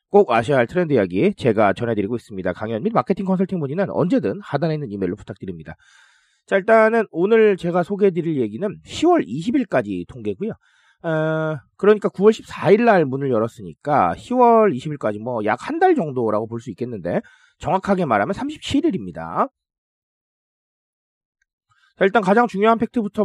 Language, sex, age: Korean, male, 40-59